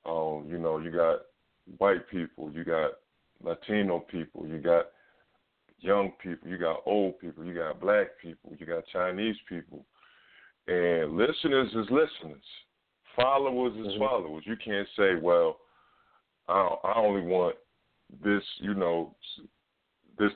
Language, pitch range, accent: English, 85-105 Hz, American